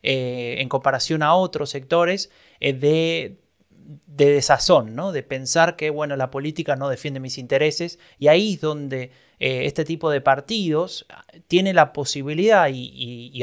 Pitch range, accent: 135-170 Hz, Argentinian